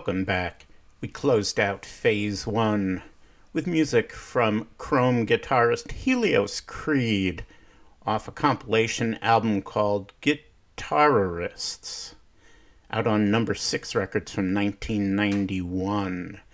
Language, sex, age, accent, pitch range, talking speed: English, male, 50-69, American, 100-115 Hz, 100 wpm